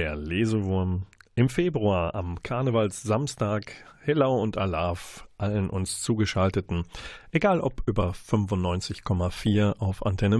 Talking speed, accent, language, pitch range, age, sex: 105 wpm, German, German, 95-125 Hz, 40-59, male